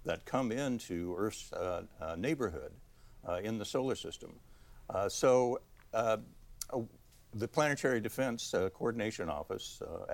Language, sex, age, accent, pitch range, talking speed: English, male, 60-79, American, 90-110 Hz, 130 wpm